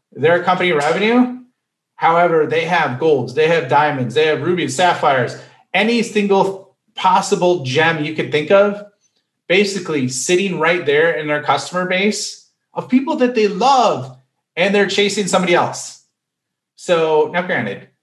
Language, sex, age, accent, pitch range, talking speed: English, male, 30-49, American, 135-180 Hz, 145 wpm